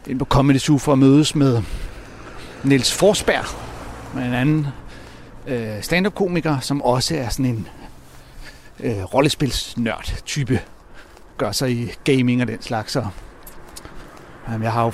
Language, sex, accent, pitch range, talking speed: Danish, male, native, 115-145 Hz, 145 wpm